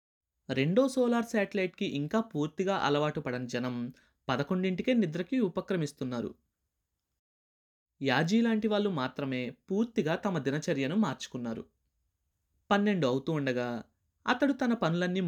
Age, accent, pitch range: 20-39, native, 125-200 Hz